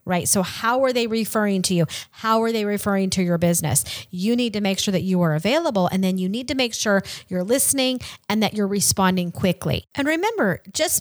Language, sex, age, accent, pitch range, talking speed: English, female, 30-49, American, 185-245 Hz, 225 wpm